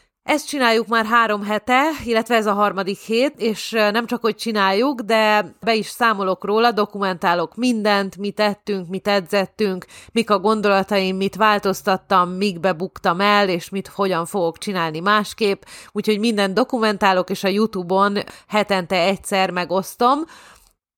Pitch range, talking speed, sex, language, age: 190-220 Hz, 135 wpm, female, Hungarian, 30-49